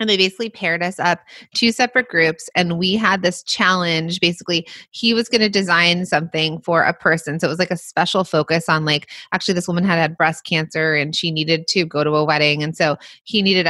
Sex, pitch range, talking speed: female, 155-215 Hz, 230 wpm